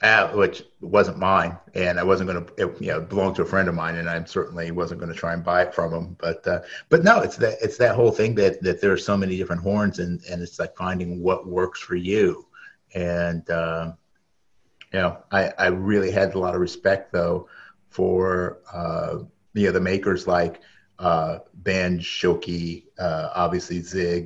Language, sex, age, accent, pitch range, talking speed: English, male, 50-69, American, 85-100 Hz, 200 wpm